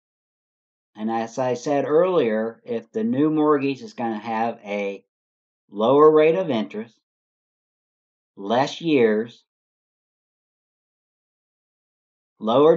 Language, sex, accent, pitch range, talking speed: English, male, American, 105-145 Hz, 100 wpm